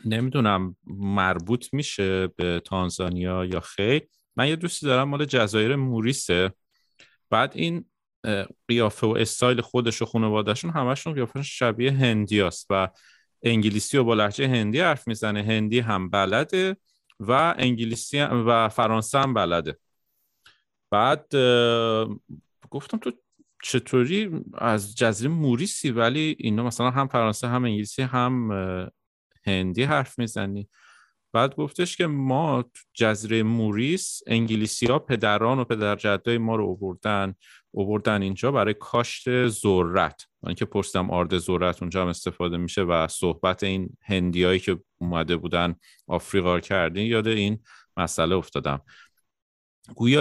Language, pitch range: Persian, 95-125 Hz